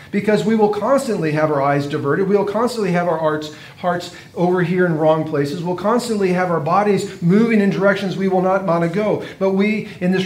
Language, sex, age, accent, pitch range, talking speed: English, male, 40-59, American, 155-195 Hz, 220 wpm